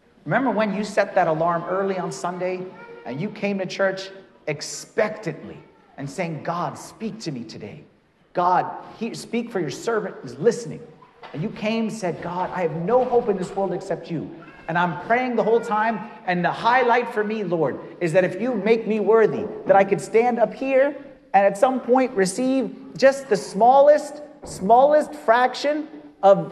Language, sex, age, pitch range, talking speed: English, male, 40-59, 185-250 Hz, 185 wpm